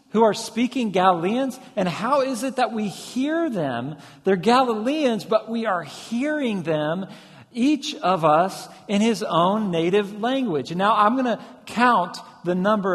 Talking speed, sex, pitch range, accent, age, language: 160 wpm, male, 175-245 Hz, American, 50-69, English